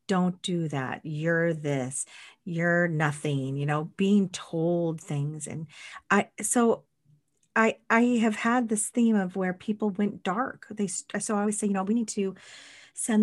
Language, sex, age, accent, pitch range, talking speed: English, female, 40-59, American, 150-205 Hz, 170 wpm